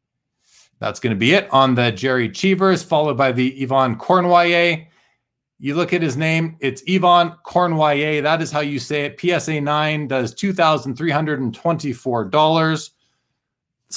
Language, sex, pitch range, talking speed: English, male, 120-160 Hz, 140 wpm